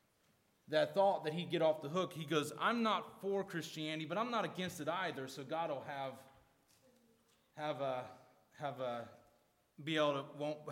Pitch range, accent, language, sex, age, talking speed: 150-195 Hz, American, English, male, 30-49, 170 wpm